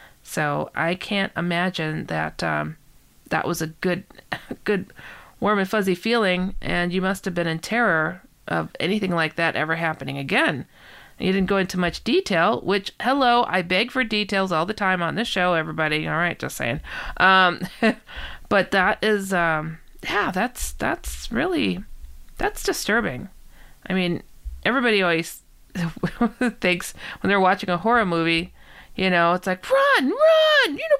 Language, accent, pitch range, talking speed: English, American, 165-230 Hz, 155 wpm